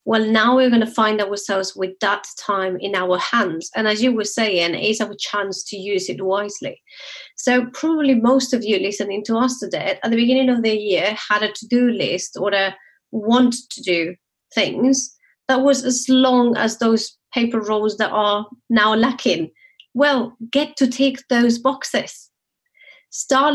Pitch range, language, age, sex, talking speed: 200-255 Hz, English, 30-49, female, 175 wpm